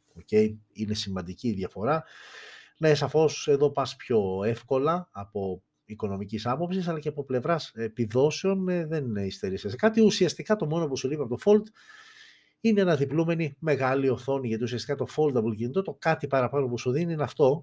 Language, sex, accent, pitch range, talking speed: Greek, male, native, 115-175 Hz, 165 wpm